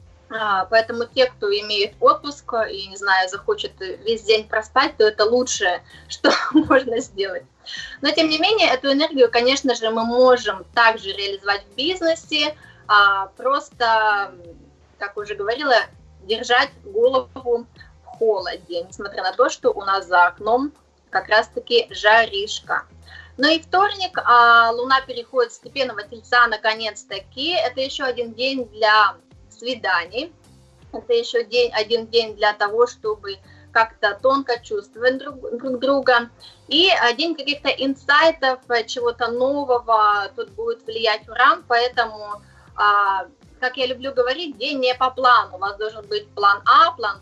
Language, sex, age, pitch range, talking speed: Russian, female, 20-39, 215-280 Hz, 135 wpm